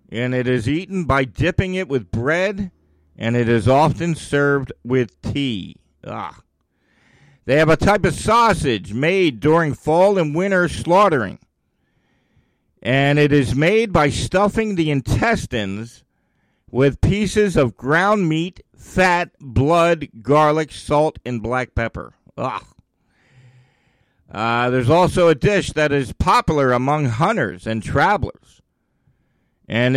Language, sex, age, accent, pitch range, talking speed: English, male, 50-69, American, 125-170 Hz, 120 wpm